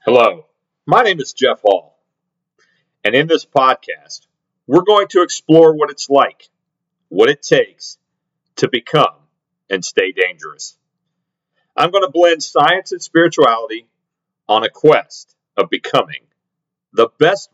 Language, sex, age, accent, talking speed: English, male, 40-59, American, 135 wpm